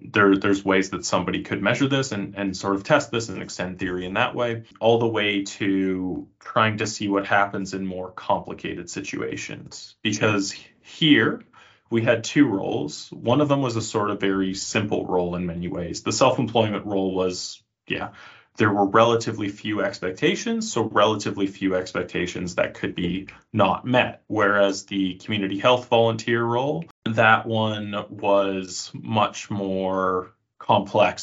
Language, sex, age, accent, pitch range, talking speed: English, male, 20-39, American, 95-115 Hz, 160 wpm